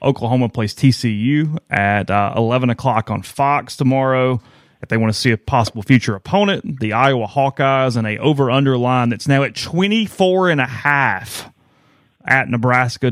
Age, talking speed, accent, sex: 30-49, 145 wpm, American, male